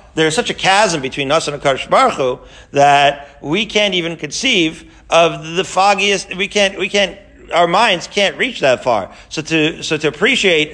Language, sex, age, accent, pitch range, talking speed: English, male, 40-59, American, 140-185 Hz, 185 wpm